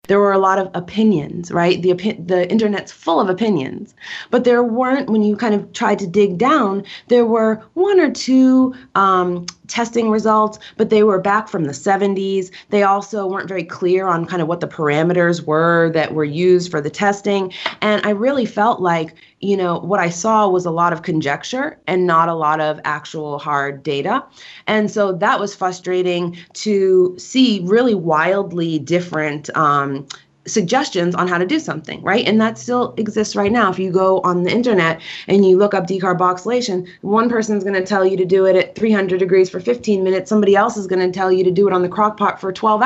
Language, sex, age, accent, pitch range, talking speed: English, female, 30-49, American, 175-215 Hz, 205 wpm